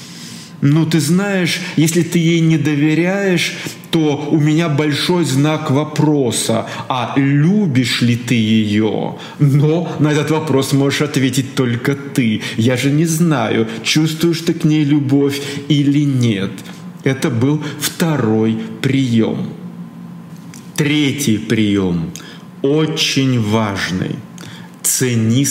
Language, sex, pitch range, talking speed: Russian, male, 135-175 Hz, 110 wpm